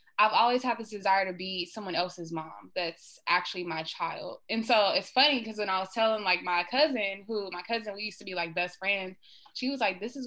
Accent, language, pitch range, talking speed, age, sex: American, English, 175-215 Hz, 240 wpm, 20-39, female